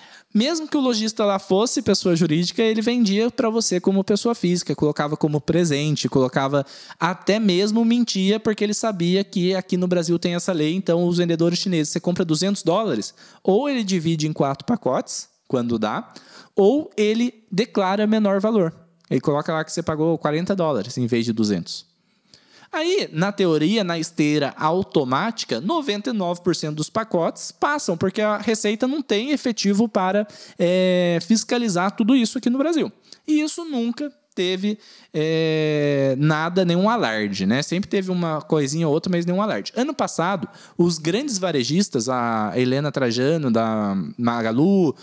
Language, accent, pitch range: Portuguese, Brazilian, 155-220 Hz